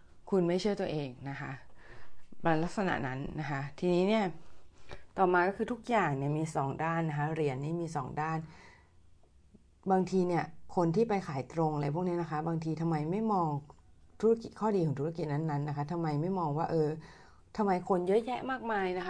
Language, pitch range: Thai, 150-185 Hz